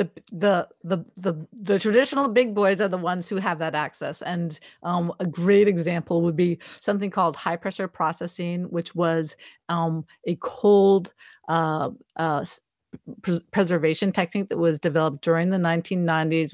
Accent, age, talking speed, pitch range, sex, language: American, 50-69, 150 wpm, 165-195 Hz, female, English